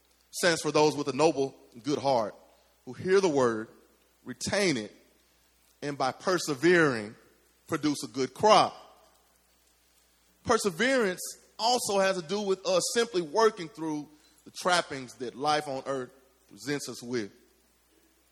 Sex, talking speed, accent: male, 135 wpm, American